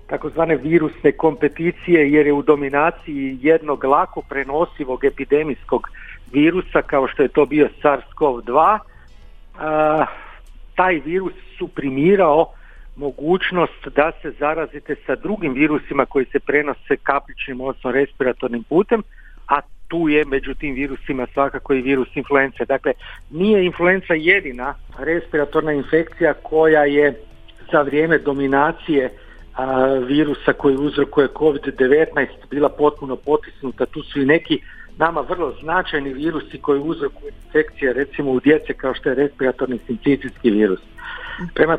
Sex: male